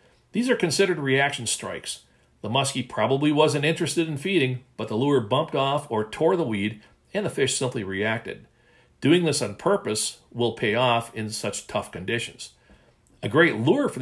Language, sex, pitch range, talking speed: English, male, 110-145 Hz, 175 wpm